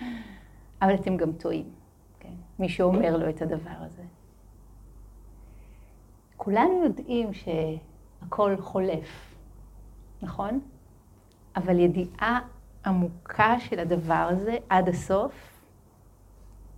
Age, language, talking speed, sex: 40-59, Hebrew, 85 wpm, female